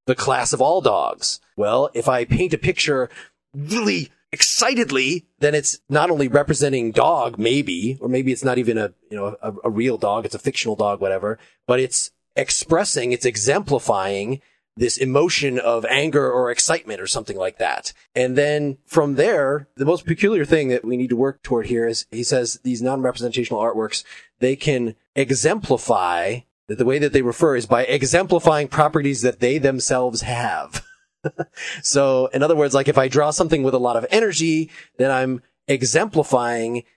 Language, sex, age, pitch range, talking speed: English, male, 30-49, 120-150 Hz, 175 wpm